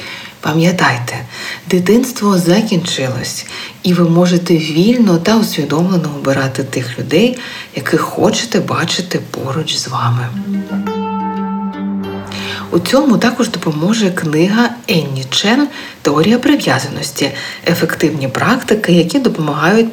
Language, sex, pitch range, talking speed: Ukrainian, female, 140-185 Hz, 95 wpm